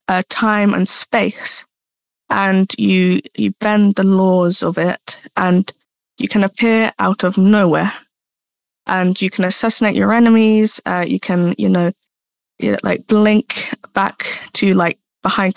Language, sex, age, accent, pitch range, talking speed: English, female, 10-29, British, 180-215 Hz, 145 wpm